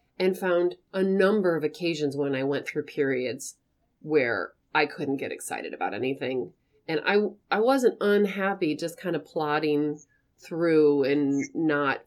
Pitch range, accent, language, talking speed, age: 145-190 Hz, American, English, 150 wpm, 30-49